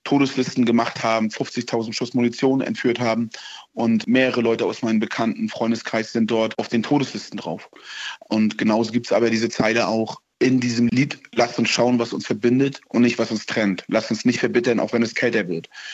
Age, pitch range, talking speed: 30-49, 110-125 Hz, 195 wpm